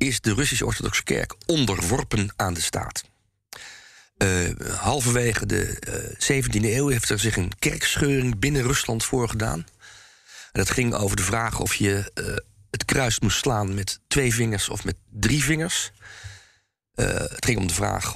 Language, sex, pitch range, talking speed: Dutch, male, 100-135 Hz, 160 wpm